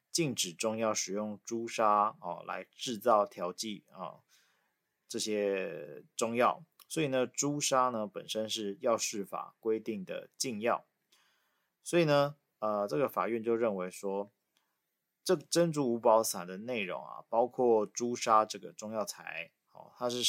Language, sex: Chinese, male